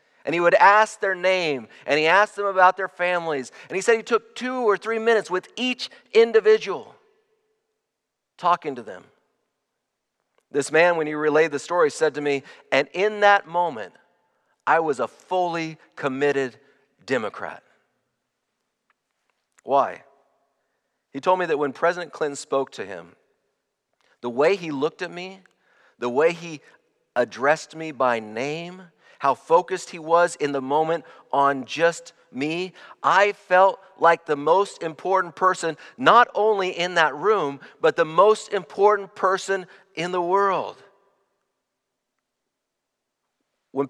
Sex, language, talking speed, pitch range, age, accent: male, English, 140 wpm, 150-200 Hz, 40-59, American